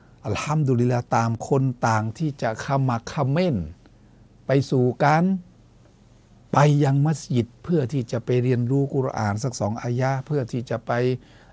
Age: 60-79